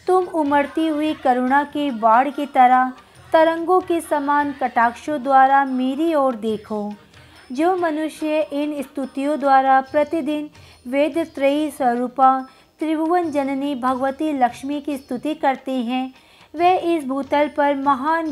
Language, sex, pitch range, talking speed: Hindi, female, 265-330 Hz, 120 wpm